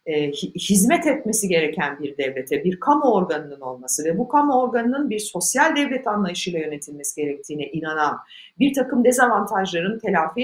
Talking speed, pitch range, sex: 140 wpm, 170-255 Hz, female